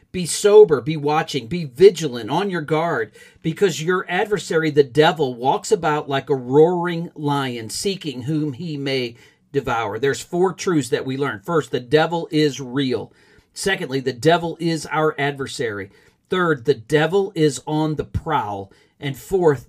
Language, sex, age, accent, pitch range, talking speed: English, male, 40-59, American, 140-170 Hz, 155 wpm